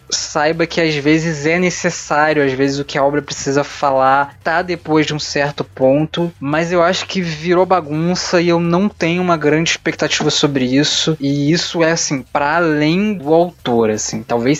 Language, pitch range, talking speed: Portuguese, 140-180 Hz, 185 wpm